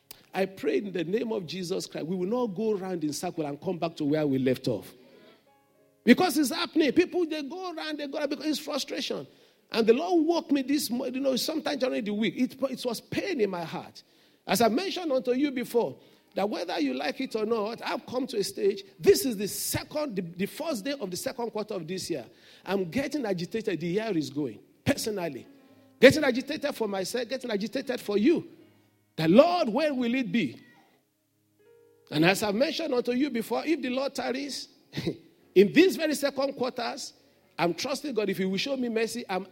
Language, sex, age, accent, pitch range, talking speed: English, male, 50-69, Nigerian, 180-275 Hz, 210 wpm